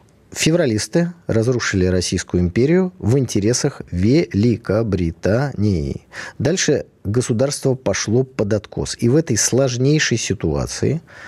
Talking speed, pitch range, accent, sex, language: 90 wpm, 100-145 Hz, native, male, Russian